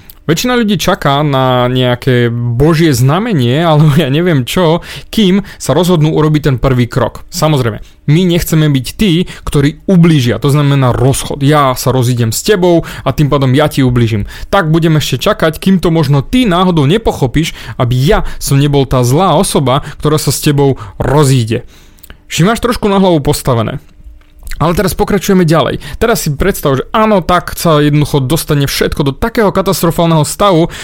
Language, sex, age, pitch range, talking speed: Slovak, male, 30-49, 135-185 Hz, 165 wpm